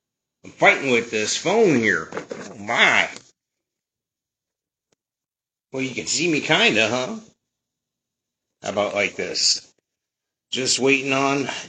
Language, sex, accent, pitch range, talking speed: English, male, American, 110-140 Hz, 120 wpm